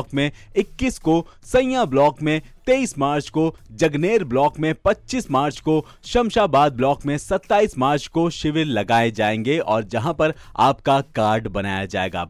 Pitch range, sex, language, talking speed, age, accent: 130-190 Hz, male, Hindi, 150 wpm, 30-49, native